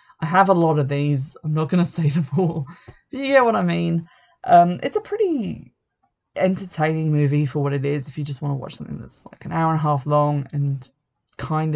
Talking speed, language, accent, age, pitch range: 235 wpm, English, British, 20-39, 145-175 Hz